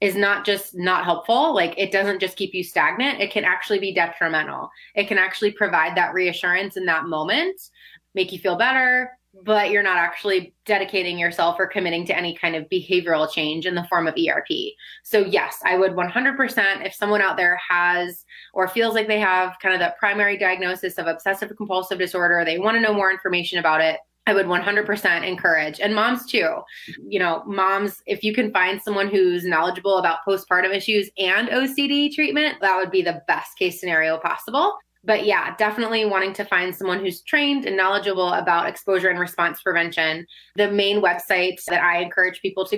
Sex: female